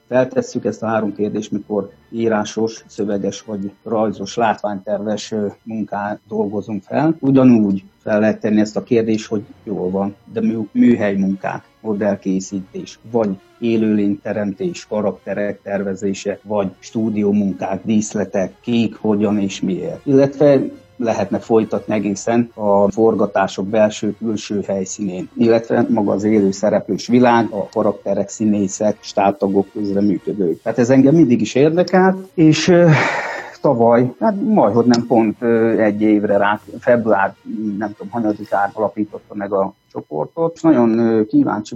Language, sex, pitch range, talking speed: Hungarian, male, 100-120 Hz, 125 wpm